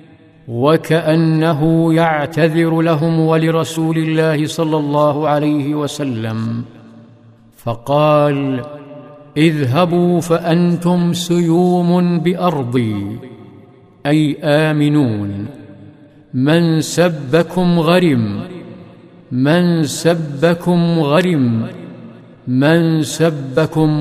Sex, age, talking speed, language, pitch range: male, 50-69, 60 wpm, Arabic, 145-170 Hz